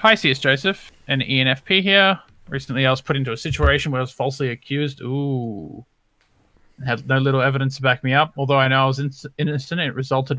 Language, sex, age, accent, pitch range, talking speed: English, male, 20-39, Australian, 130-145 Hz, 210 wpm